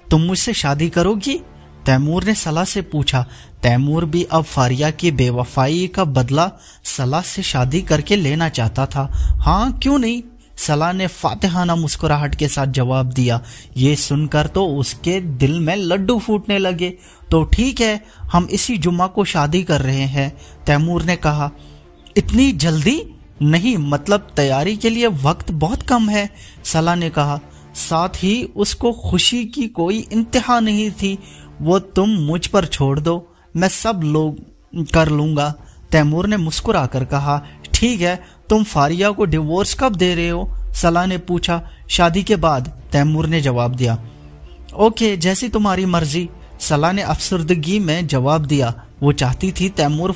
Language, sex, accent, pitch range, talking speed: Hindi, male, native, 140-195 Hz, 155 wpm